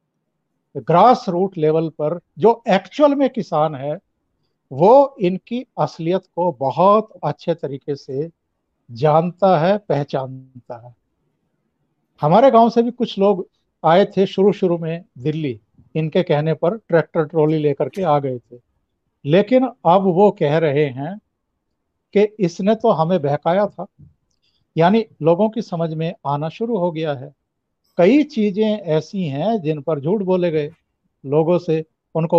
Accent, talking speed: Indian, 135 wpm